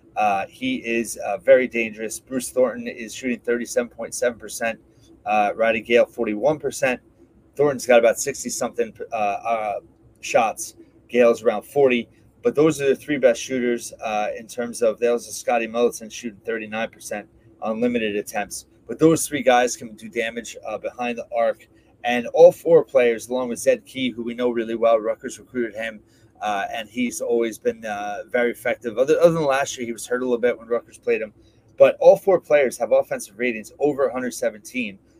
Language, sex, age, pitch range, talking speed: English, male, 30-49, 115-150 Hz, 175 wpm